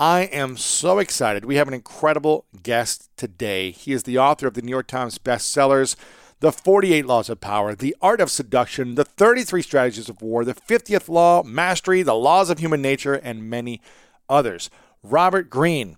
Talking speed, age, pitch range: 180 wpm, 40-59, 120-155 Hz